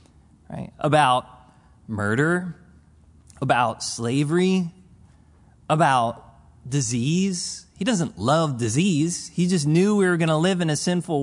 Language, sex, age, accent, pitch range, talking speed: English, male, 30-49, American, 100-170 Hz, 110 wpm